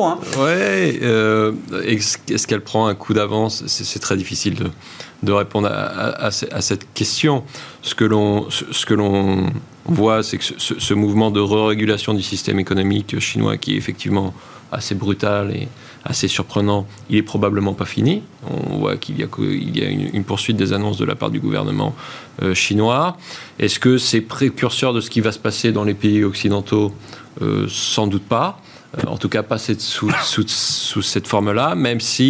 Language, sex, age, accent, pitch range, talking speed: French, male, 30-49, French, 100-120 Hz, 190 wpm